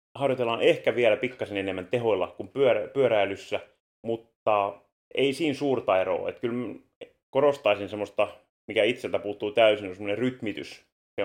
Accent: native